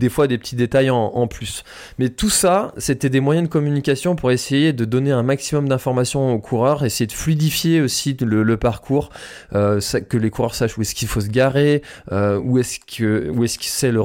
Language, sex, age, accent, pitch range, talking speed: French, male, 20-39, French, 110-135 Hz, 220 wpm